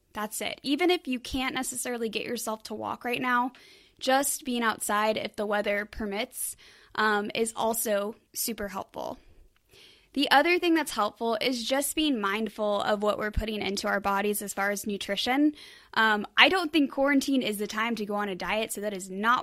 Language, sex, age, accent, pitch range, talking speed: English, female, 10-29, American, 210-250 Hz, 190 wpm